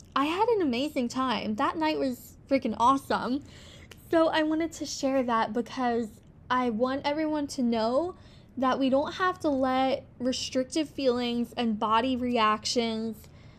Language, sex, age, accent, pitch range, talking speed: English, female, 10-29, American, 235-280 Hz, 145 wpm